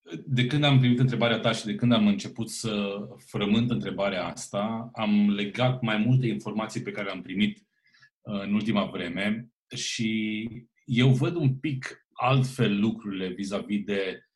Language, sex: Romanian, male